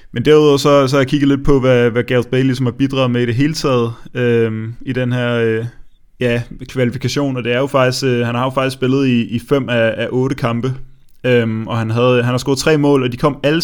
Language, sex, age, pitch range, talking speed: Danish, male, 20-39, 120-135 Hz, 255 wpm